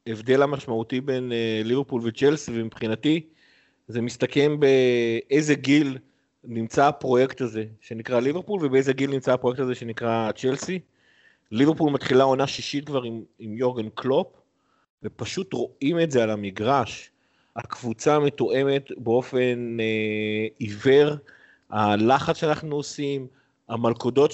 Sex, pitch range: male, 120-150 Hz